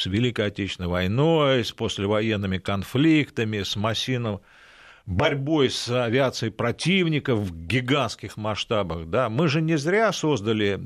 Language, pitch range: Russian, 100-130 Hz